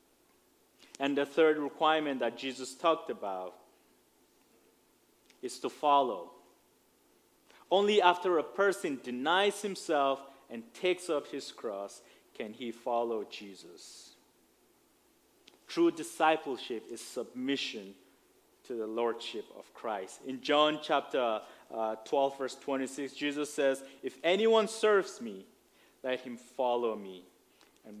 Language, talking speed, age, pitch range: English, 115 wpm, 30-49, 125-210 Hz